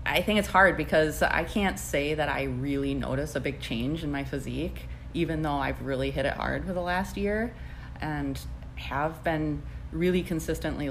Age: 30-49